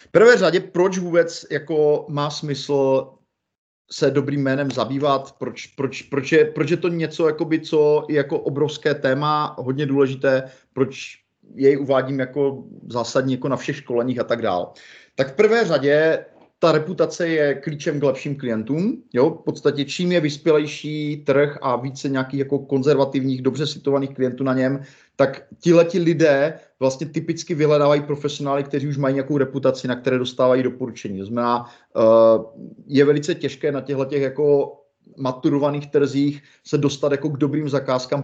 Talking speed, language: 160 wpm, Czech